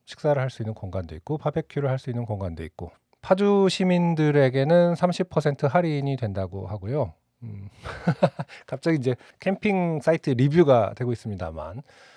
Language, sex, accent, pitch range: Korean, male, native, 115-160 Hz